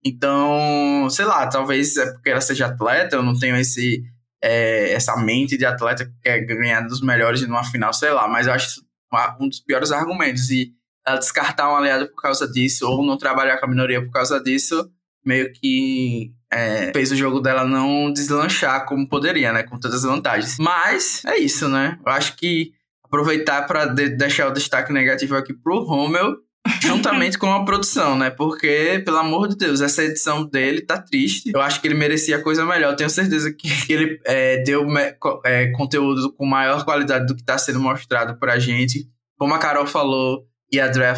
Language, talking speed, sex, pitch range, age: Portuguese, 190 wpm, male, 125-145 Hz, 10-29